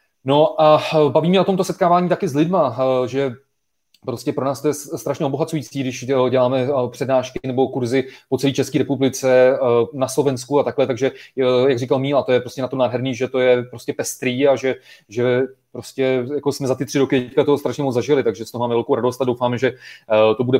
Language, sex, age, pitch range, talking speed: Czech, male, 30-49, 125-145 Hz, 210 wpm